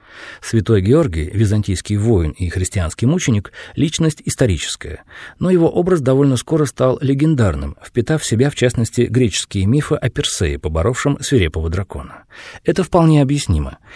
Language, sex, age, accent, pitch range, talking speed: Russian, male, 40-59, native, 100-140 Hz, 140 wpm